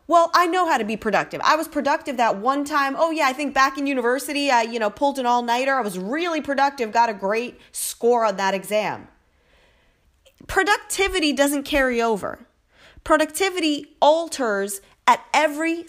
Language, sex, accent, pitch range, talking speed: English, female, American, 225-305 Hz, 170 wpm